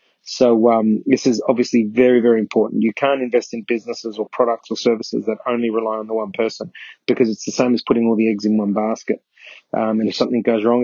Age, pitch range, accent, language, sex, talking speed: 30-49, 110-135 Hz, Australian, English, male, 235 wpm